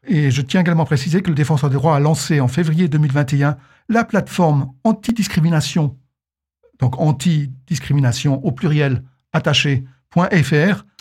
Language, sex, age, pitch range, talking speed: French, male, 60-79, 135-180 Hz, 130 wpm